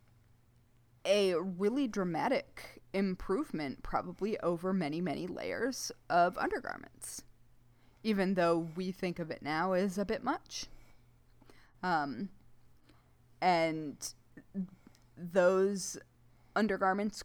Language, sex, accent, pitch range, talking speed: English, female, American, 150-200 Hz, 90 wpm